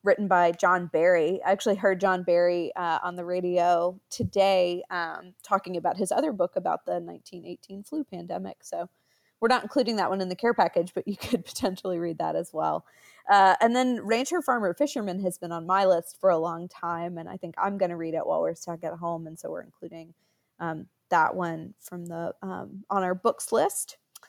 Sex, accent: female, American